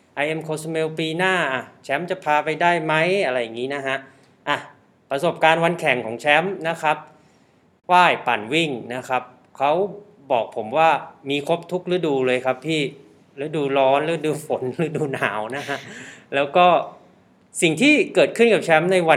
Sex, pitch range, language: male, 130-165 Hz, Thai